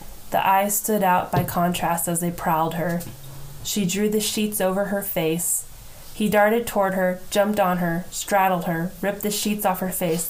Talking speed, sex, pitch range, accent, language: 185 wpm, female, 170-200 Hz, American, English